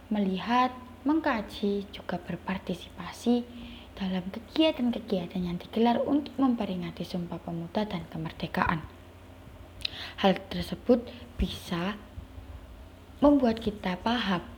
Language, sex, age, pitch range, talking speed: Indonesian, female, 20-39, 170-220 Hz, 80 wpm